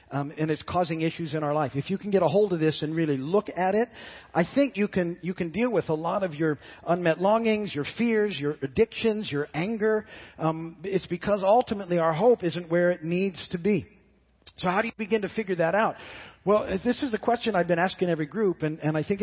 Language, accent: English, American